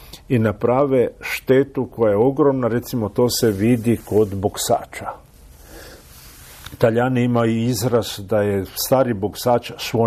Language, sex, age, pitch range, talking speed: Croatian, male, 50-69, 95-120 Hz, 120 wpm